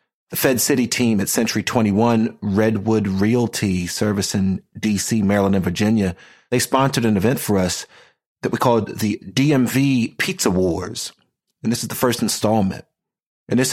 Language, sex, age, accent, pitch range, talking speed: English, male, 40-59, American, 100-125 Hz, 155 wpm